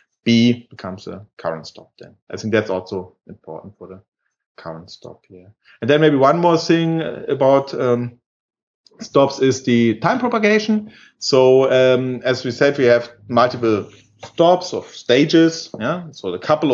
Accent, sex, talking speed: German, male, 160 wpm